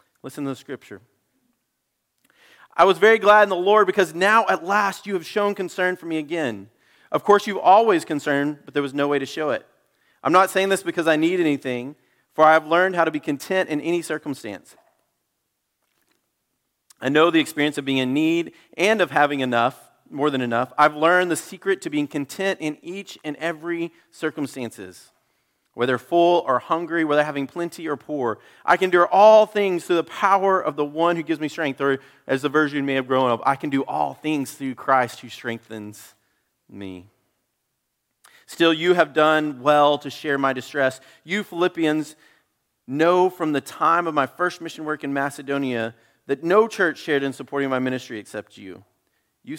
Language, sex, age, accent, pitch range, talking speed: English, male, 40-59, American, 135-170 Hz, 190 wpm